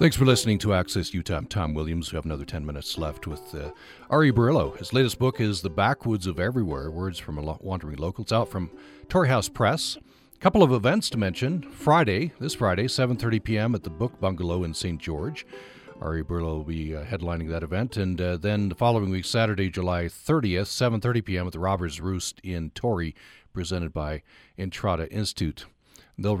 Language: English